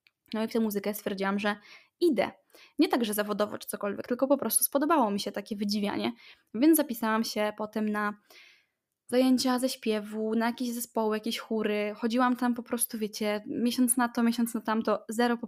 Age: 10-29